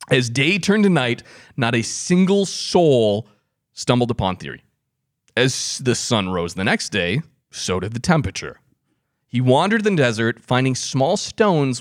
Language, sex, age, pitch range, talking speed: English, male, 30-49, 110-145 Hz, 150 wpm